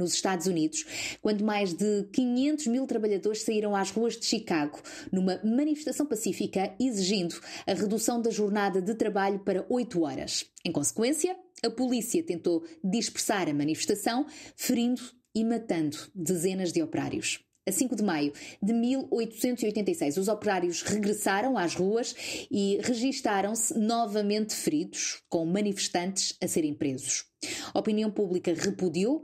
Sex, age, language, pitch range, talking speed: female, 20-39, Portuguese, 180-235 Hz, 135 wpm